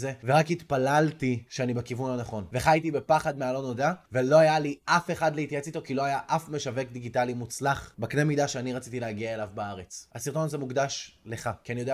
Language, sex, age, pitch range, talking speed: Hebrew, male, 20-39, 115-140 Hz, 190 wpm